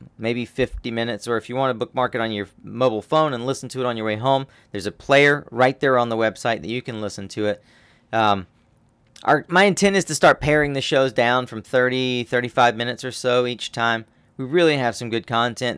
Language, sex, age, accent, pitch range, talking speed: English, male, 40-59, American, 115-140 Hz, 230 wpm